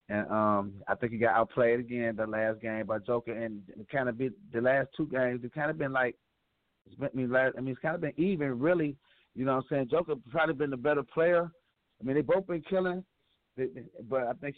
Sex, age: male, 30-49